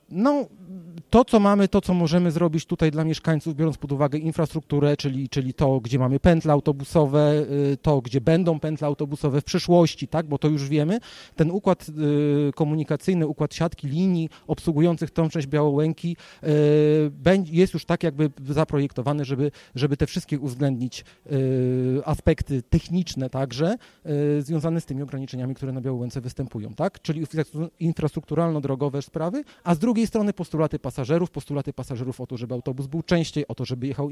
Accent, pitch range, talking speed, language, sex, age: native, 140-165 Hz, 155 wpm, Polish, male, 40-59